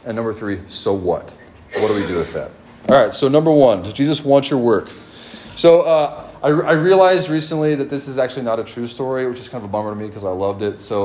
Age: 30-49